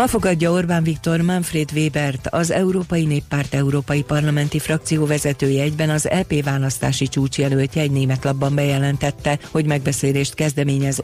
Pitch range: 135-150 Hz